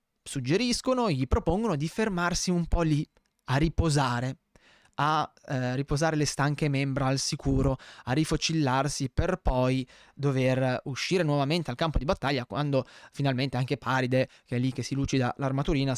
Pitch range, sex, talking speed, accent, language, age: 125-165 Hz, male, 150 wpm, native, Italian, 20-39